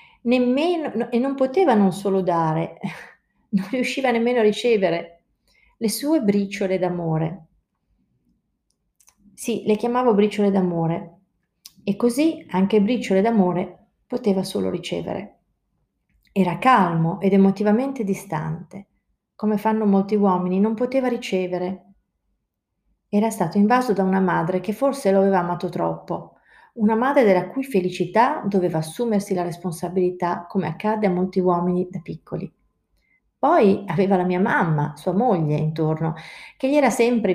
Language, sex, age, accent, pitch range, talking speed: Italian, female, 40-59, native, 180-220 Hz, 130 wpm